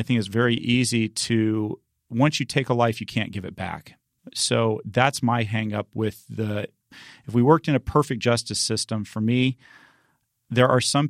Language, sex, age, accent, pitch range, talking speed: English, male, 30-49, American, 110-120 Hz, 180 wpm